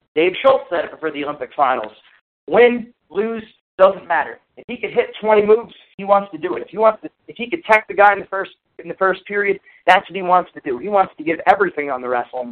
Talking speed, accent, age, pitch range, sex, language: 260 wpm, American, 40-59, 160-215 Hz, male, English